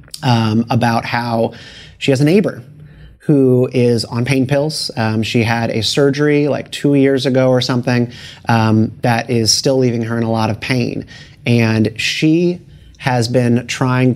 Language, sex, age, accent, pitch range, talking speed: English, male, 30-49, American, 120-140 Hz, 165 wpm